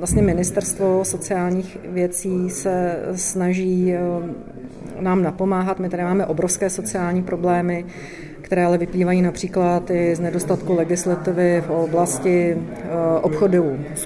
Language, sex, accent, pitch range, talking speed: Czech, female, native, 170-185 Hz, 110 wpm